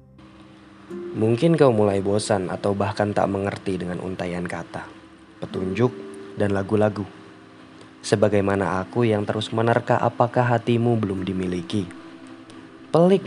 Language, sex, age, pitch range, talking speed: Indonesian, male, 20-39, 85-105 Hz, 110 wpm